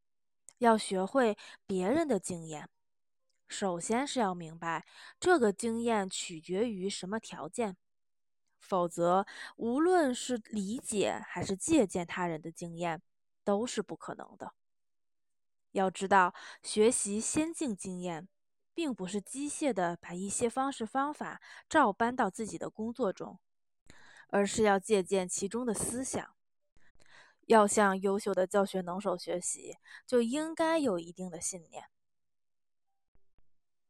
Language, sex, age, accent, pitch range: Chinese, female, 20-39, native, 185-240 Hz